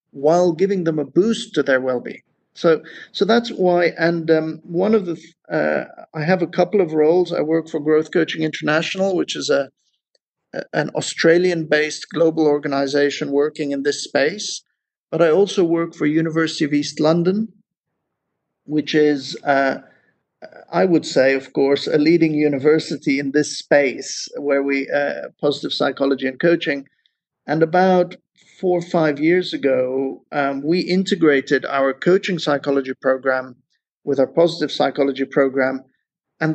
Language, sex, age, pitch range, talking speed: English, male, 50-69, 140-170 Hz, 150 wpm